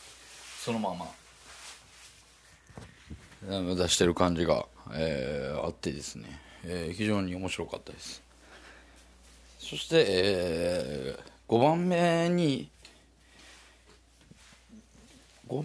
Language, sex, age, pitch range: Japanese, male, 40-59, 80-110 Hz